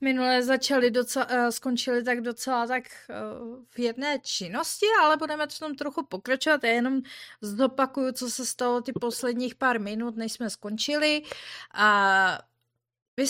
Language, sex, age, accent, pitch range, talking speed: Czech, female, 30-49, native, 220-275 Hz, 140 wpm